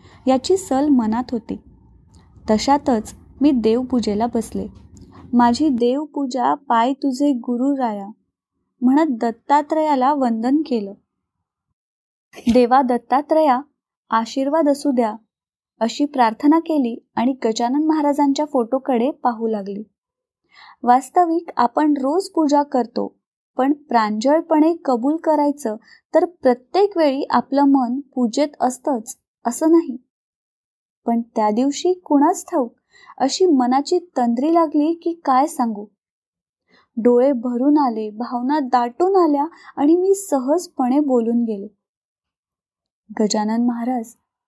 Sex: female